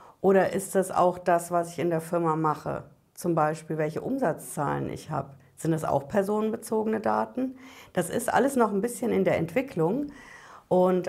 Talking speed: 175 wpm